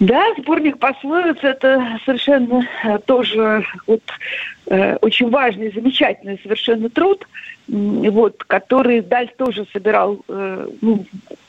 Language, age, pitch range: Russian, 50-69, 215-270 Hz